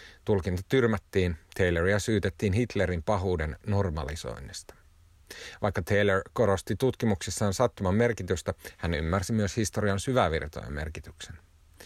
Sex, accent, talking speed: male, native, 95 wpm